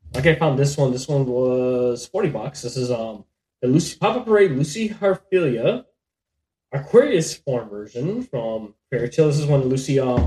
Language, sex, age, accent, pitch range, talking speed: English, male, 20-39, American, 100-140 Hz, 175 wpm